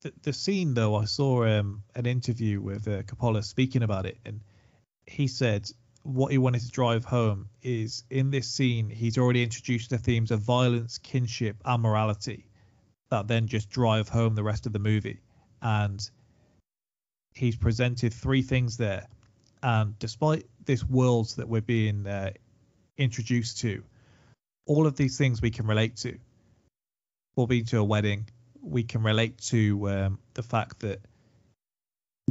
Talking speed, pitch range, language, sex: 155 wpm, 110-125 Hz, English, male